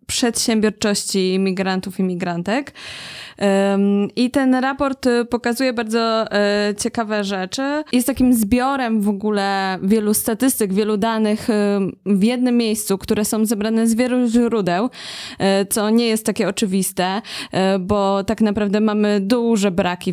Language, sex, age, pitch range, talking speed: Polish, female, 20-39, 195-235 Hz, 120 wpm